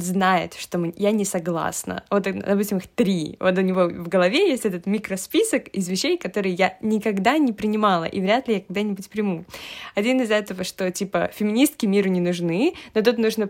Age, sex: 20-39, female